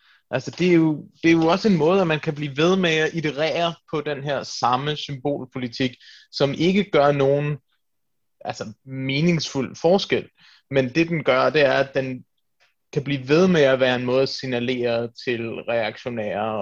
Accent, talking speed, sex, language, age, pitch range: native, 180 wpm, male, Danish, 20-39, 125-155 Hz